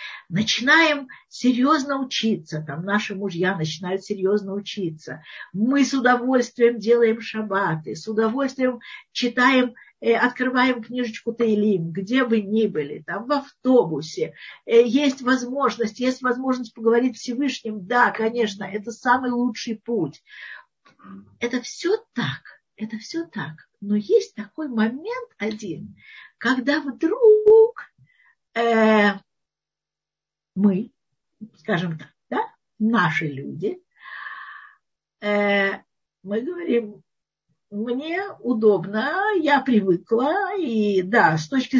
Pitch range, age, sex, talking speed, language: 205-260 Hz, 50-69, female, 100 wpm, Russian